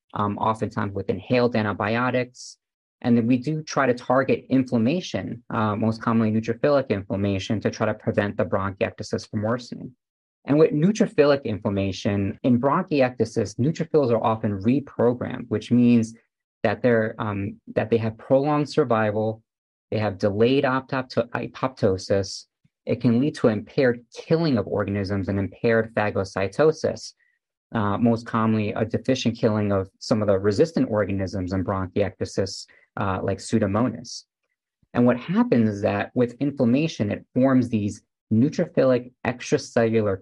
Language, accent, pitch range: English, American, 105-130 Hz